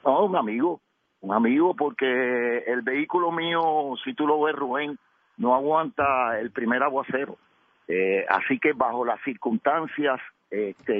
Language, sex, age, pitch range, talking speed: Spanish, male, 50-69, 120-150 Hz, 140 wpm